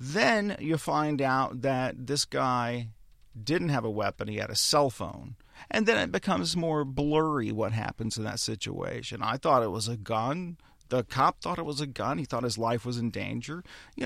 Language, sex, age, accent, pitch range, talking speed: English, male, 40-59, American, 115-155 Hz, 205 wpm